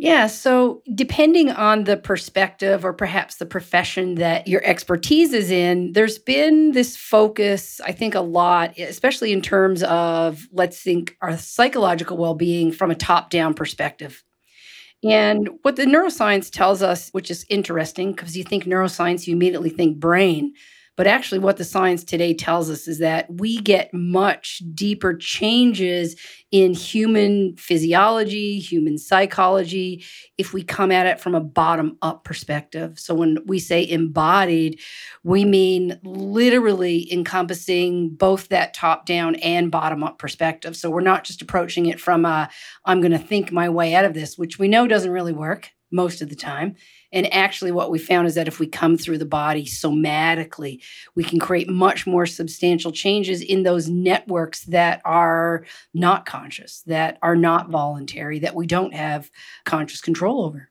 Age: 40-59